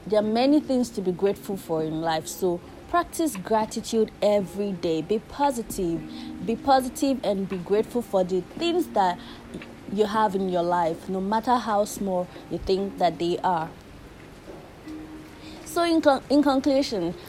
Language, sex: English, female